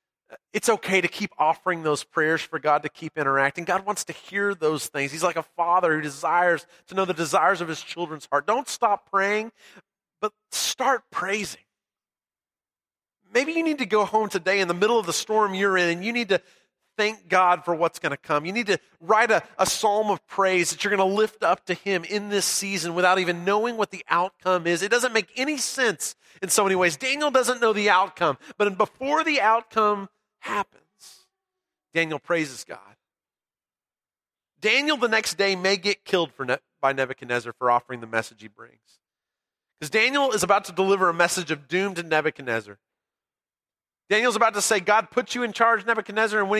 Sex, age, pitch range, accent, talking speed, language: male, 40-59, 170-215 Hz, American, 200 wpm, English